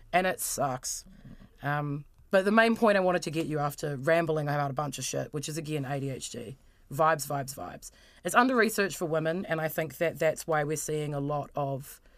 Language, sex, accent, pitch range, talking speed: English, female, Australian, 145-175 Hz, 210 wpm